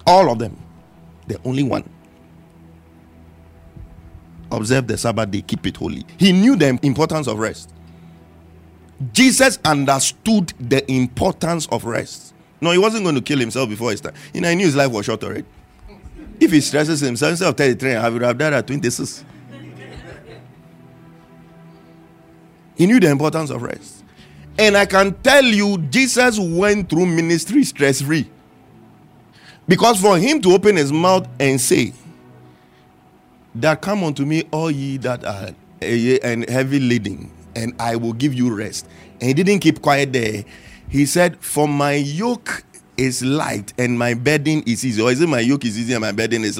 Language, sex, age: English, male, 50-69